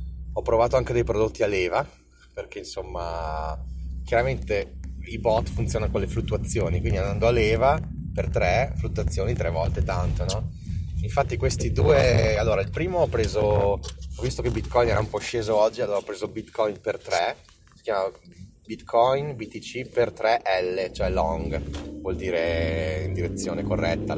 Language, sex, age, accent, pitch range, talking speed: Italian, male, 30-49, native, 75-115 Hz, 155 wpm